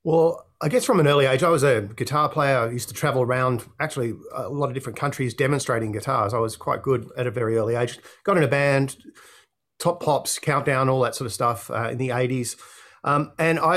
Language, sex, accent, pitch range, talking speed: English, male, Australian, 125-150 Hz, 225 wpm